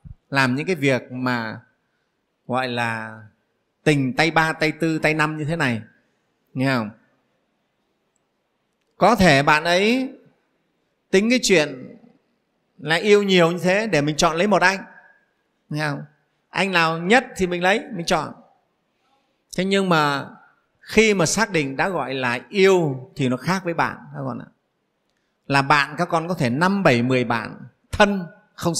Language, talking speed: Vietnamese, 165 wpm